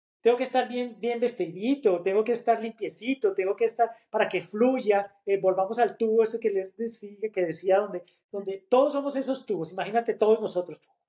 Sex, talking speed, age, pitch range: male, 190 wpm, 30-49, 165-215 Hz